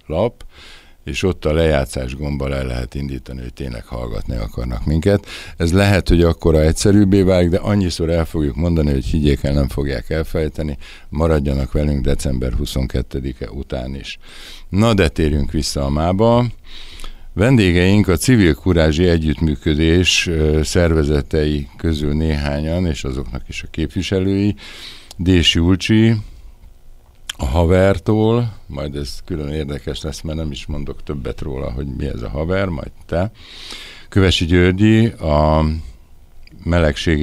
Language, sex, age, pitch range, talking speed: Hungarian, male, 60-79, 70-90 Hz, 130 wpm